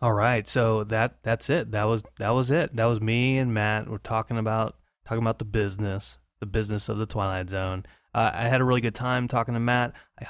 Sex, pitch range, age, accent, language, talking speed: male, 110-135 Hz, 30-49, American, English, 235 wpm